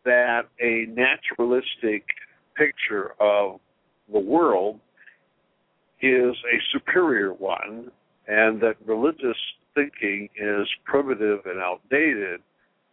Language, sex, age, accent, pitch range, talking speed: English, male, 60-79, American, 100-125 Hz, 90 wpm